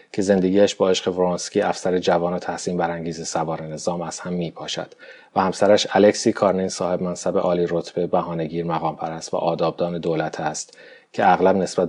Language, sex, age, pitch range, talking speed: Persian, male, 30-49, 85-100 Hz, 170 wpm